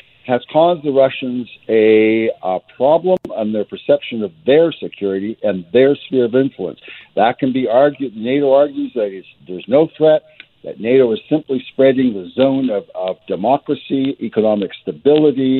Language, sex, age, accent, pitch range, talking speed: English, male, 60-79, American, 105-135 Hz, 155 wpm